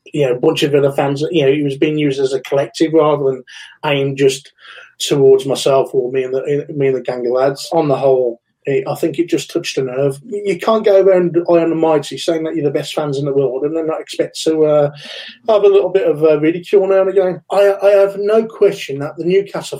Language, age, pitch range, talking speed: English, 30-49, 140-185 Hz, 245 wpm